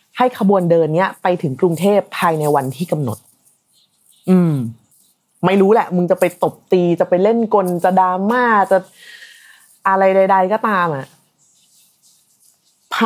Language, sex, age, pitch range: Thai, female, 20-39, 160-215 Hz